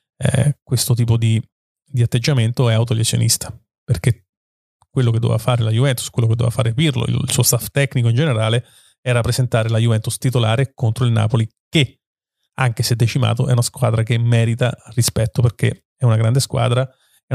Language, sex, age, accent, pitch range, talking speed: Italian, male, 30-49, native, 115-135 Hz, 175 wpm